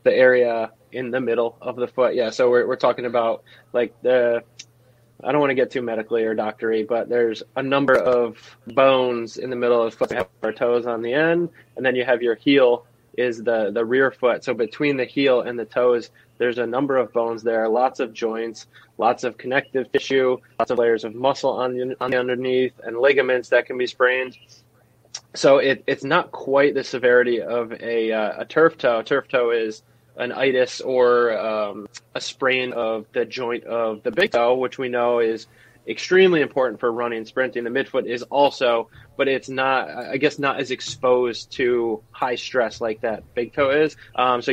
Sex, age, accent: male, 20-39, American